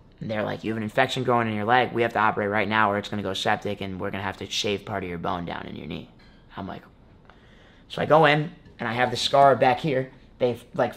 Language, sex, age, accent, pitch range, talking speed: English, male, 20-39, American, 110-135 Hz, 285 wpm